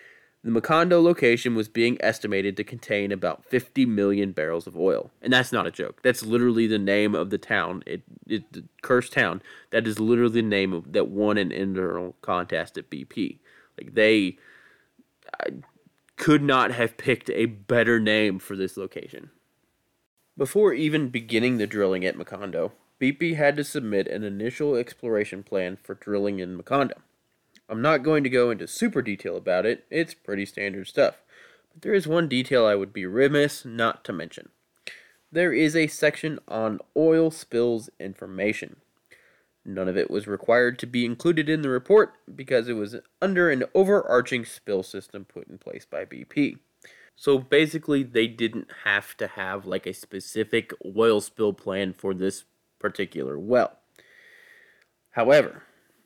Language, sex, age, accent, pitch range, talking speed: English, male, 20-39, American, 100-150 Hz, 165 wpm